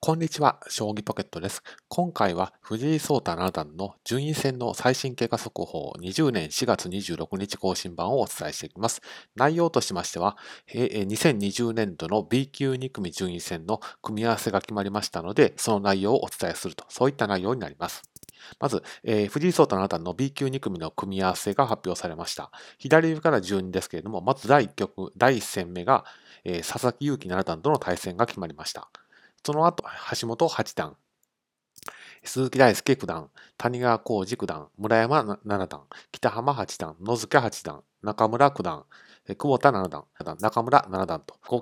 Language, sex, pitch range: Japanese, male, 95-135 Hz